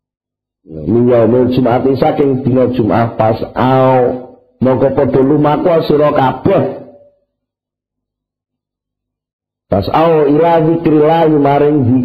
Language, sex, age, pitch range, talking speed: Indonesian, male, 50-69, 110-165 Hz, 65 wpm